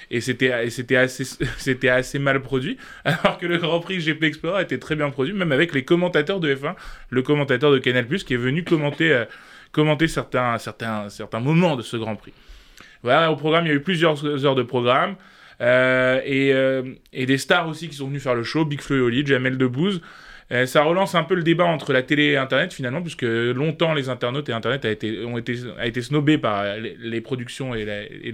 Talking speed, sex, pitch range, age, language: 220 wpm, male, 125-155 Hz, 20-39, French